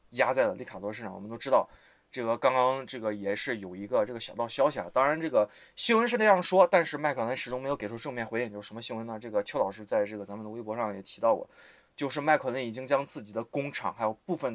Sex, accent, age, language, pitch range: male, native, 20-39, Chinese, 115-175 Hz